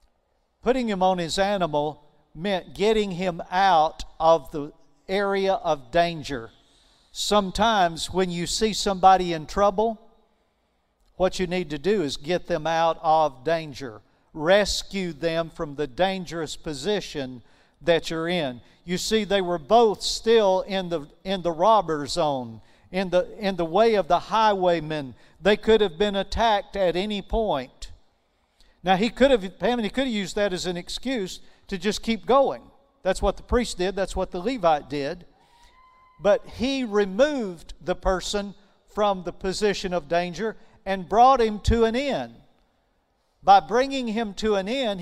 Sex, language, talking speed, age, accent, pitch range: male, English, 155 wpm, 50-69, American, 165-210 Hz